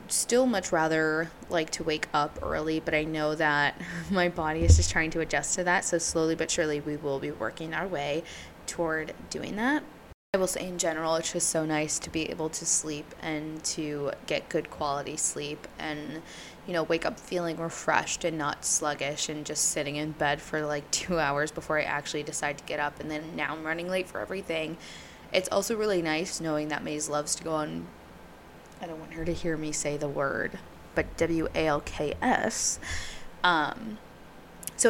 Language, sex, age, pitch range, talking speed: English, female, 20-39, 150-175 Hz, 195 wpm